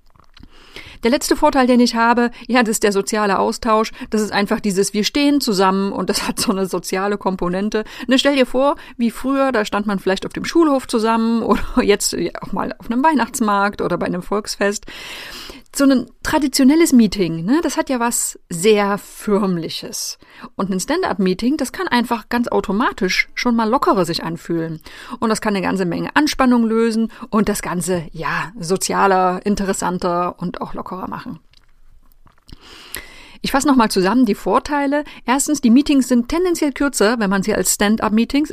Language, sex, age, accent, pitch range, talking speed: German, female, 30-49, German, 200-260 Hz, 170 wpm